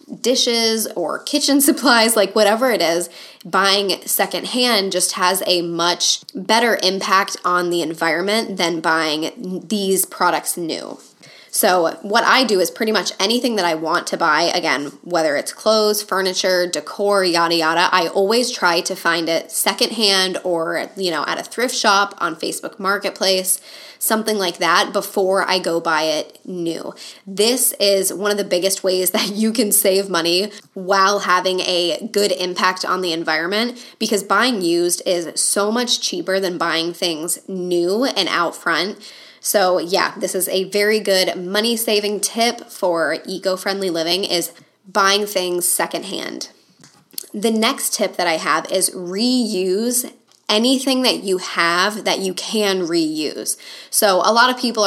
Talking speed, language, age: 155 wpm, English, 10-29